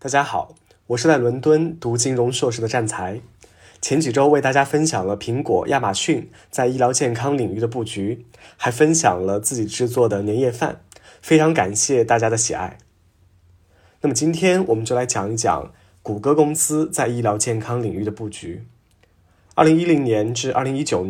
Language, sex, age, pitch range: Chinese, male, 20-39, 110-150 Hz